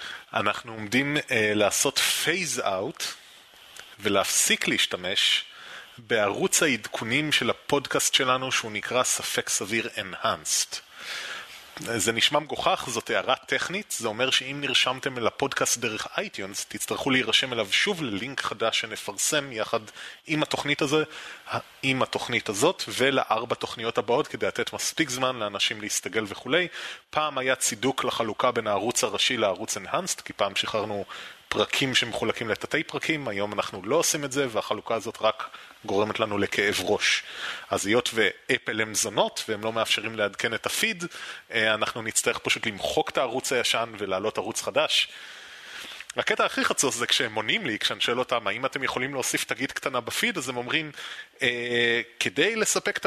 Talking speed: 145 wpm